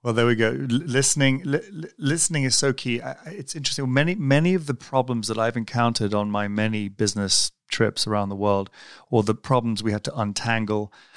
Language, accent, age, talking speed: English, British, 30-49, 185 wpm